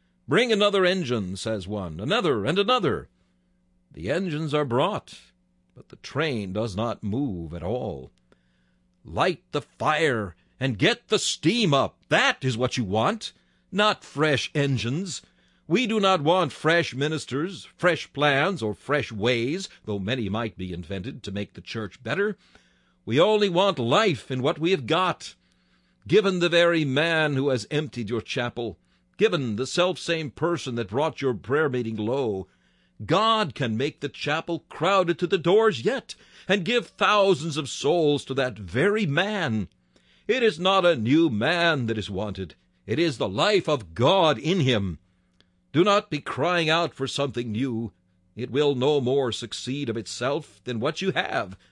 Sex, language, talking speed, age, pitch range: male, English, 160 wpm, 60-79, 105-170 Hz